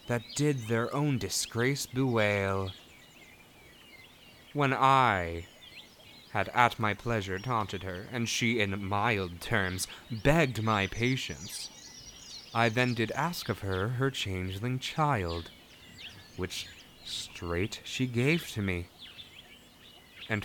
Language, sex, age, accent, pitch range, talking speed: English, male, 20-39, American, 95-130 Hz, 110 wpm